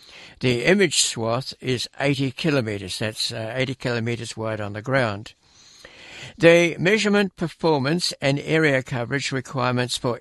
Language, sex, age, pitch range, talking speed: English, male, 60-79, 125-165 Hz, 130 wpm